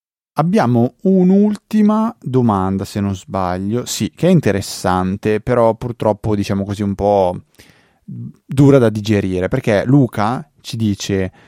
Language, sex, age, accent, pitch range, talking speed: Italian, male, 30-49, native, 100-125 Hz, 120 wpm